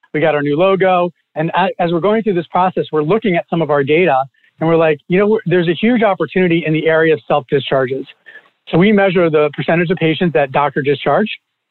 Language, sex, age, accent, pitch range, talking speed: English, male, 40-59, American, 150-185 Hz, 220 wpm